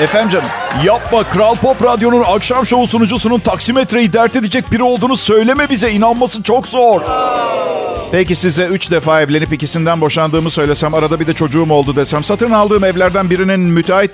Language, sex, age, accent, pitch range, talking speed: Turkish, male, 50-69, native, 195-250 Hz, 160 wpm